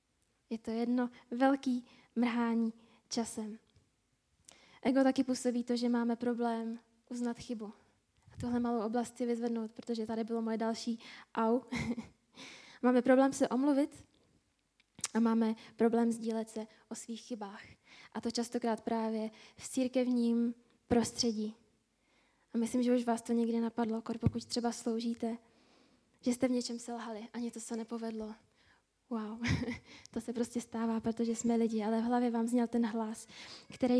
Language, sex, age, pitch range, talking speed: Czech, female, 10-29, 230-245 Hz, 145 wpm